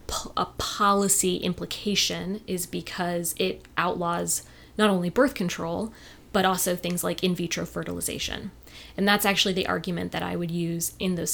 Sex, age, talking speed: female, 20-39, 150 wpm